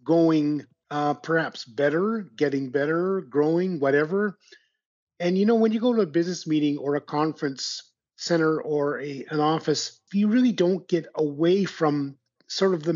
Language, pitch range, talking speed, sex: English, 145-175 Hz, 160 wpm, male